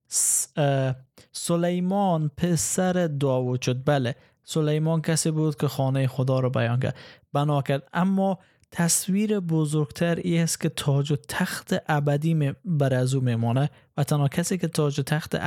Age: 20-39